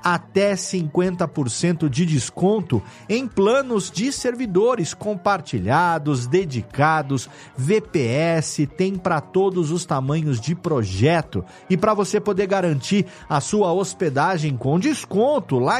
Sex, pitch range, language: male, 145-205 Hz, Portuguese